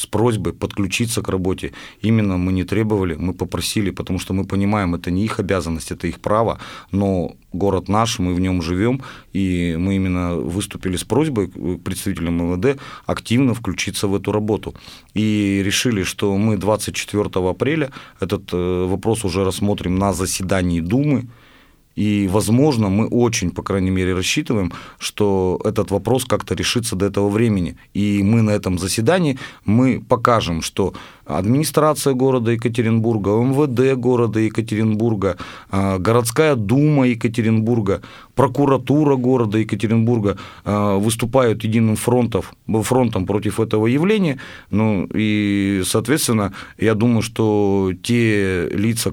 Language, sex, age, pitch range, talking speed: Russian, male, 30-49, 95-115 Hz, 130 wpm